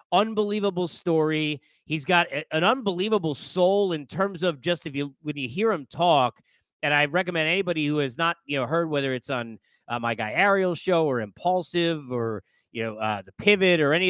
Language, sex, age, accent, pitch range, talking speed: English, male, 30-49, American, 135-175 Hz, 195 wpm